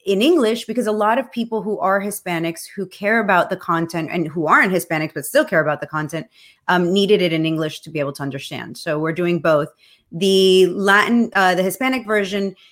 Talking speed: 210 wpm